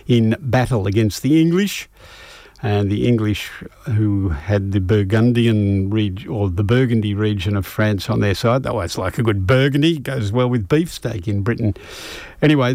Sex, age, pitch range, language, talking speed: male, 50-69, 105-130 Hz, English, 165 wpm